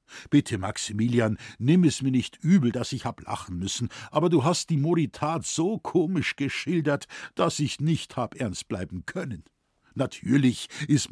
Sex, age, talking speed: male, 60-79, 155 wpm